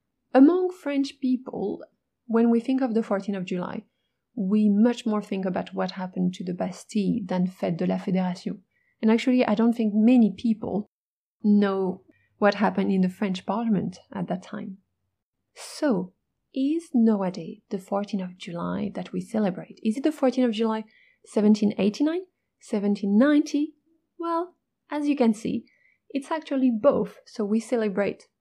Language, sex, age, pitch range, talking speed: English, female, 30-49, 205-255 Hz, 155 wpm